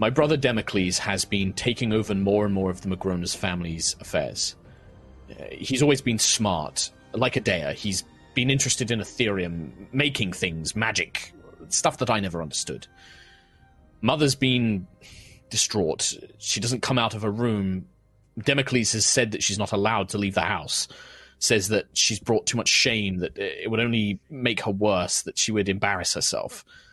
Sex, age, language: male, 30-49, English